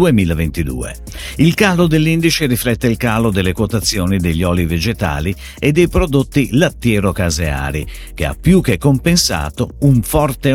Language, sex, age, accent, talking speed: Italian, male, 50-69, native, 130 wpm